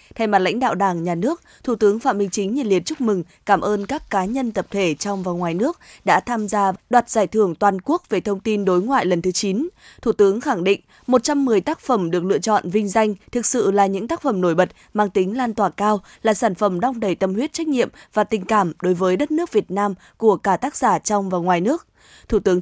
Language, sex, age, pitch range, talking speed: Vietnamese, female, 20-39, 190-245 Hz, 255 wpm